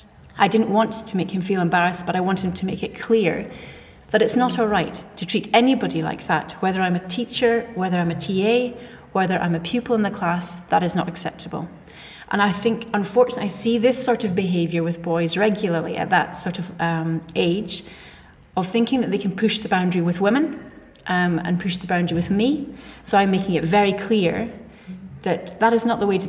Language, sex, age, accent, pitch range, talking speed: English, female, 30-49, British, 175-220 Hz, 210 wpm